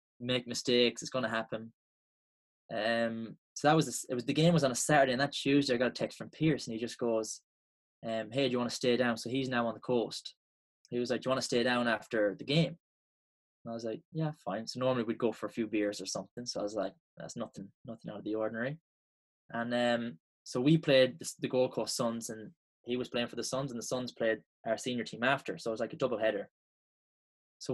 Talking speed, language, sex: 255 wpm, English, male